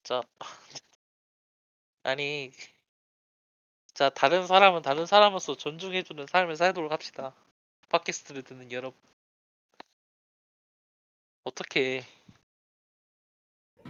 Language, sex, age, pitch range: Korean, male, 20-39, 130-175 Hz